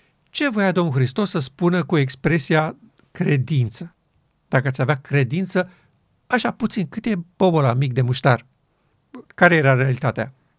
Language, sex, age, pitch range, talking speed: Romanian, male, 50-69, 135-190 Hz, 140 wpm